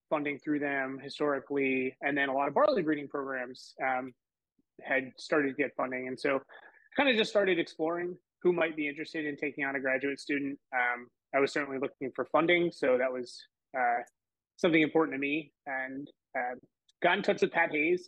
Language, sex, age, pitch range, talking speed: English, male, 20-39, 135-160 Hz, 195 wpm